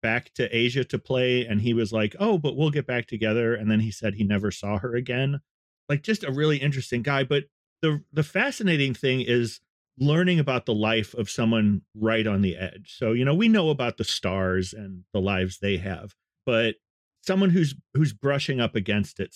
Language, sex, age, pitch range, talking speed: English, male, 40-59, 110-140 Hz, 210 wpm